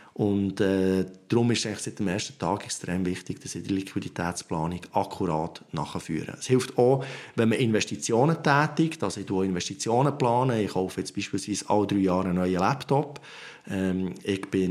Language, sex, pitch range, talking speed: German, male, 100-130 Hz, 170 wpm